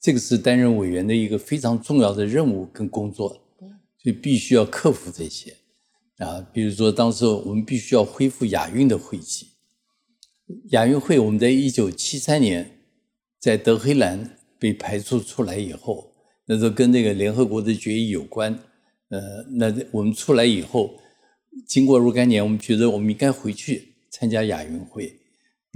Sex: male